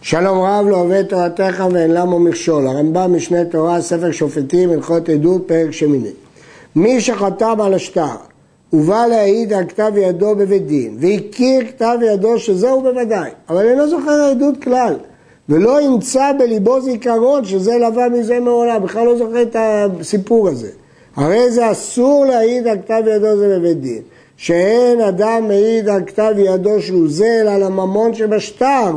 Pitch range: 175-235 Hz